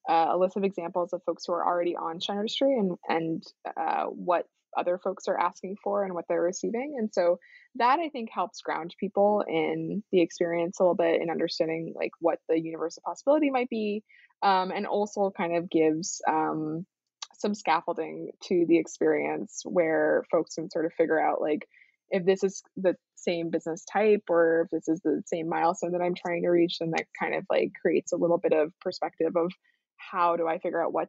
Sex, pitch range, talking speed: female, 165-200 Hz, 205 wpm